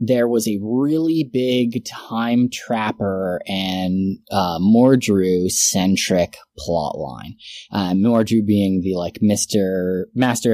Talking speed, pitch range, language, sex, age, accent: 115 wpm, 100-130 Hz, English, male, 20-39, American